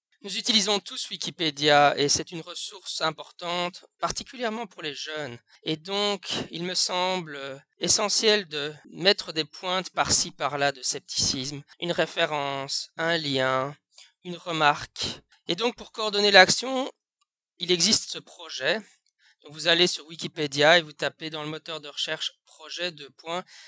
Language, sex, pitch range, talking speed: French, male, 150-195 Hz, 145 wpm